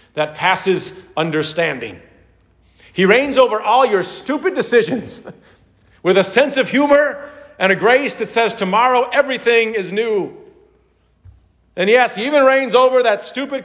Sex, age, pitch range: male, 50-69, 185-250 Hz